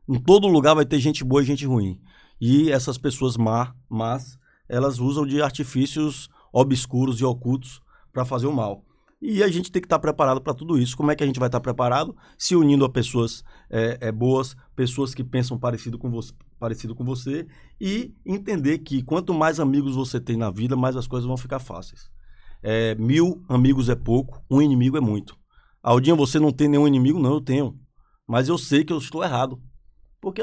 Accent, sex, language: Brazilian, male, Portuguese